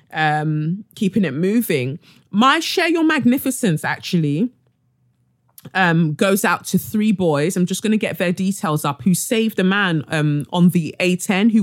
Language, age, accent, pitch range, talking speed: English, 20-39, British, 160-200 Hz, 165 wpm